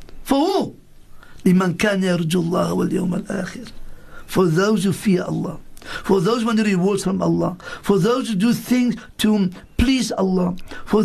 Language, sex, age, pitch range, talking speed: English, male, 60-79, 180-225 Hz, 125 wpm